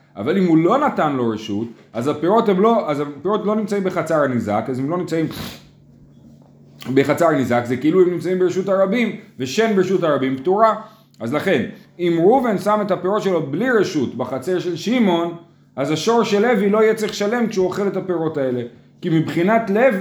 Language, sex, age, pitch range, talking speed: Hebrew, male, 30-49, 130-195 Hz, 175 wpm